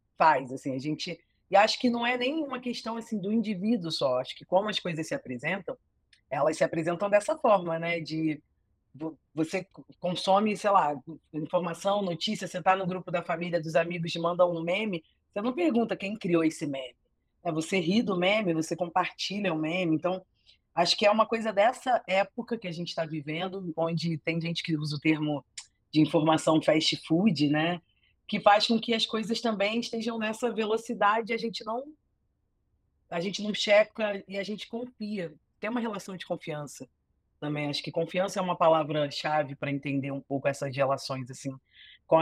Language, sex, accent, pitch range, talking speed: Portuguese, female, Brazilian, 155-210 Hz, 185 wpm